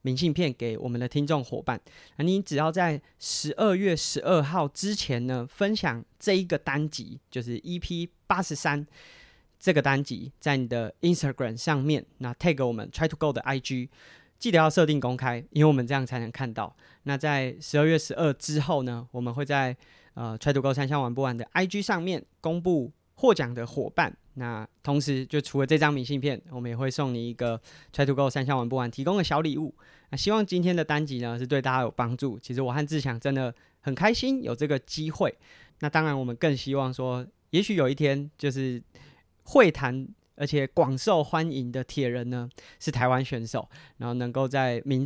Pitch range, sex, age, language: 125-155 Hz, male, 30-49, Chinese